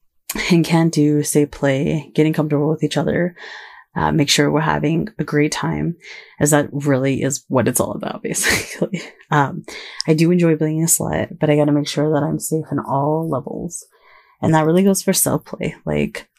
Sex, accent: female, American